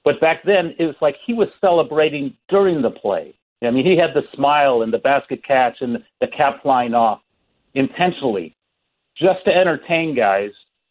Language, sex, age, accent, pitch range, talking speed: English, male, 50-69, American, 125-170 Hz, 175 wpm